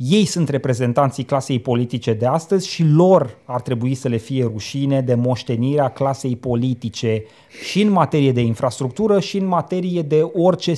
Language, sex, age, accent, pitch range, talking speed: Romanian, male, 30-49, native, 135-180 Hz, 160 wpm